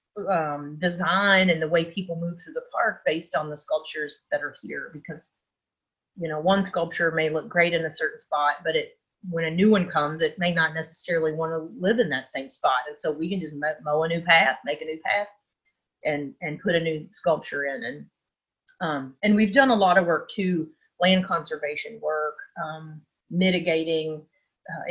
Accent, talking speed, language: American, 200 wpm, English